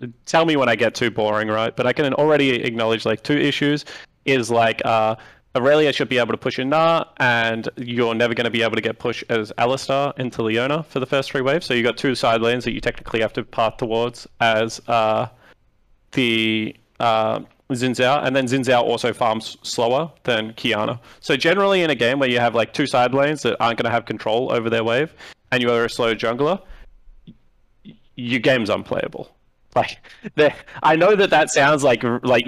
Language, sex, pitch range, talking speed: English, male, 115-140 Hz, 205 wpm